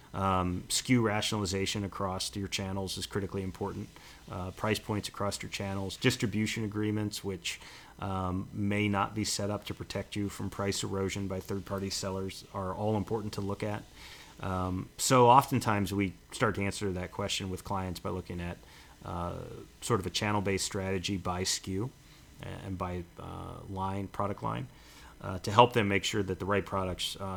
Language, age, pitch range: English, 30-49, 95-110 Hz